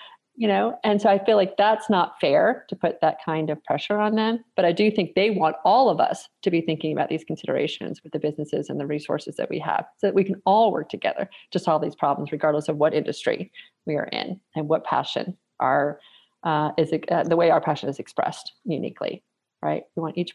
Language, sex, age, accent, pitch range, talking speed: English, female, 40-59, American, 150-190 Hz, 230 wpm